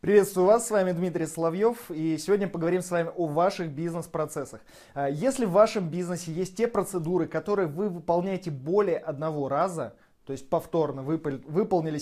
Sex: male